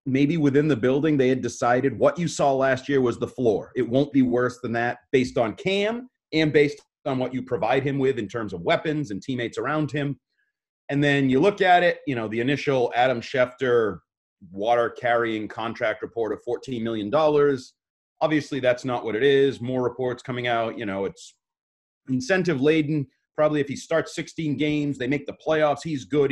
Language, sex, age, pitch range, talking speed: English, male, 30-49, 125-165 Hz, 195 wpm